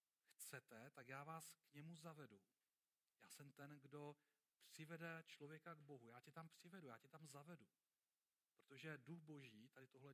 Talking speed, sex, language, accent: 165 wpm, male, Czech, native